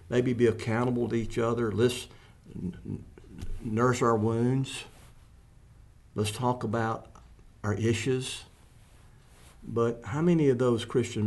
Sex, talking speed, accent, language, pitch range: male, 110 wpm, American, English, 95-115 Hz